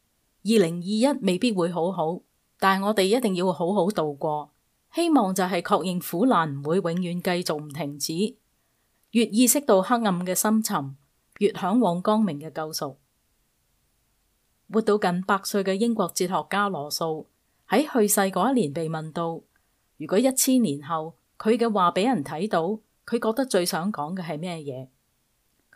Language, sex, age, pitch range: Chinese, female, 30-49, 160-215 Hz